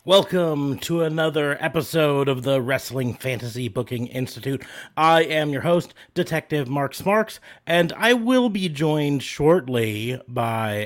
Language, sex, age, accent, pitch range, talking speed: English, male, 30-49, American, 110-150 Hz, 135 wpm